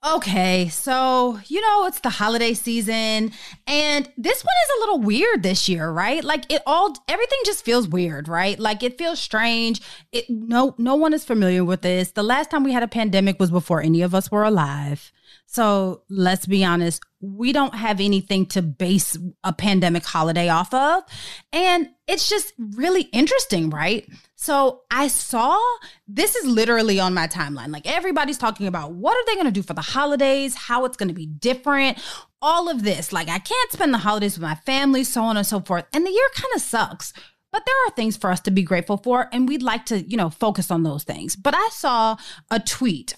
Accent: American